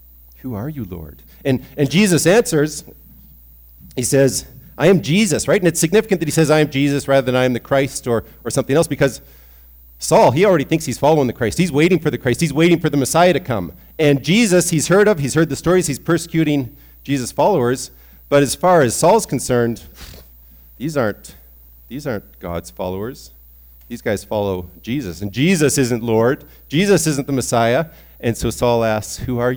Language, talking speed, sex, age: English, 195 wpm, male, 40-59